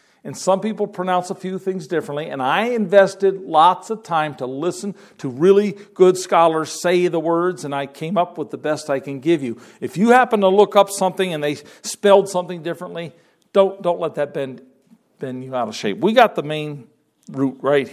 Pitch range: 140-200 Hz